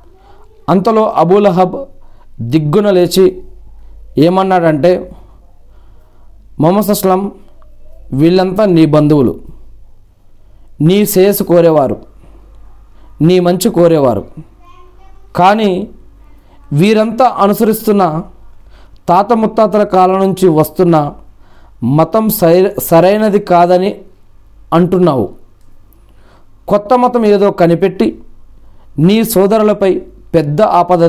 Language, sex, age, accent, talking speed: Telugu, male, 40-59, native, 70 wpm